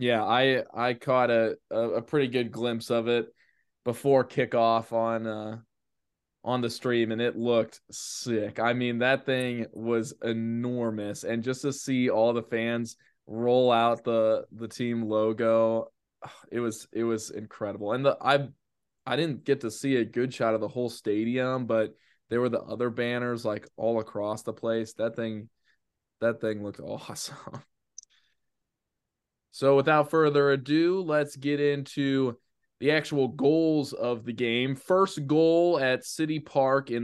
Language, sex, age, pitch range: English, male, 20-39, 115-145 Hz